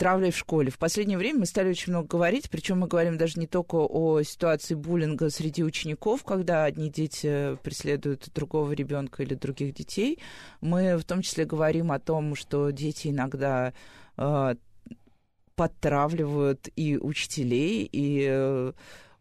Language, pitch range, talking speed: Russian, 140-185 Hz, 145 wpm